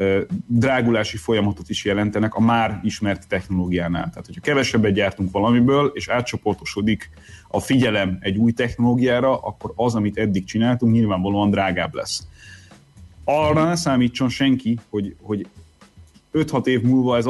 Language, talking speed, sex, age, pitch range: Hungarian, 130 wpm, male, 30-49, 100-125 Hz